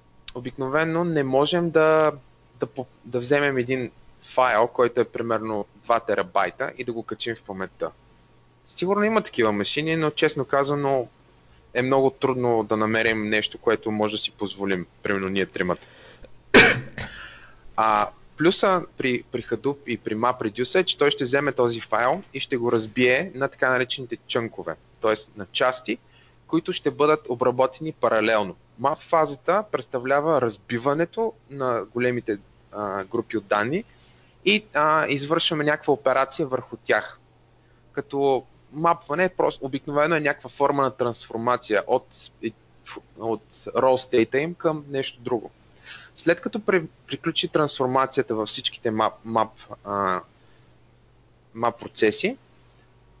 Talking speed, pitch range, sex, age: 125 wpm, 115-150 Hz, male, 20-39